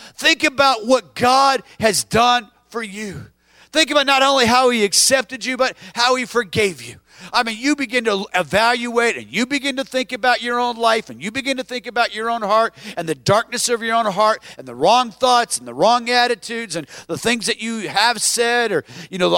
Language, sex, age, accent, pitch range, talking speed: English, male, 50-69, American, 225-285 Hz, 215 wpm